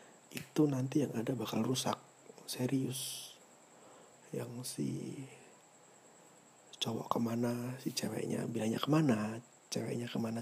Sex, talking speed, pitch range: male, 100 wpm, 120-140 Hz